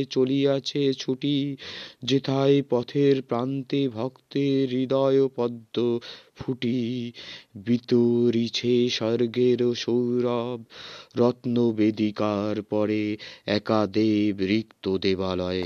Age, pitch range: 30-49, 120-135 Hz